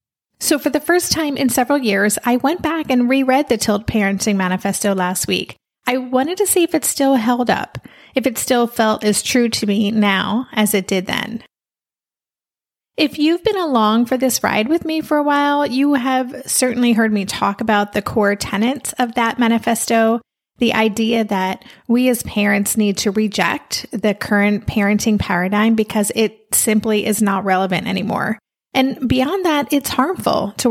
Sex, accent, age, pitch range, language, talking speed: female, American, 30-49, 210-260 Hz, English, 180 wpm